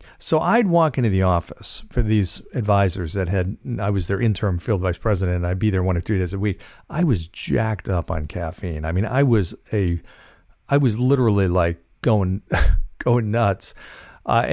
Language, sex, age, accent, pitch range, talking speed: English, male, 50-69, American, 100-130 Hz, 195 wpm